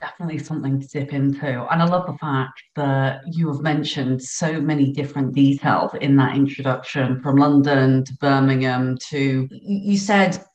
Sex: female